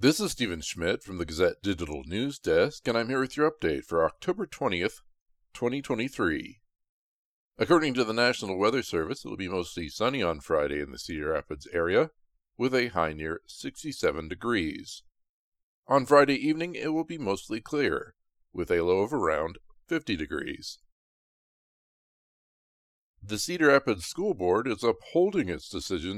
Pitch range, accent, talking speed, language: 85-130 Hz, American, 155 wpm, English